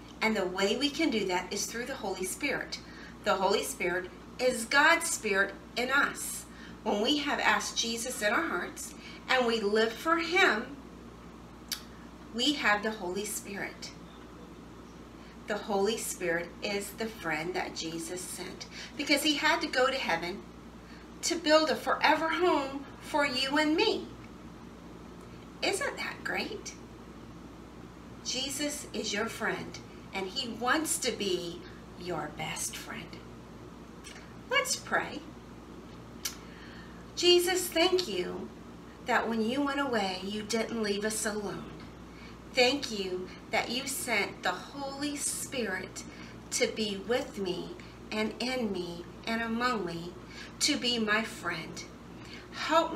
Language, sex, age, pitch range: English, female, 40-59, 170-255 Hz